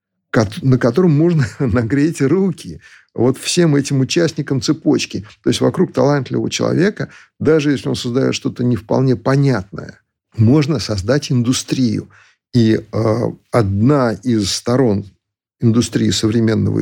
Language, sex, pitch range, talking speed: Russian, male, 105-140 Hz, 120 wpm